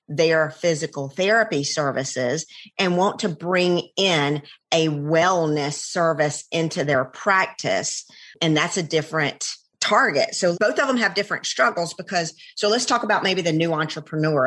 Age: 40-59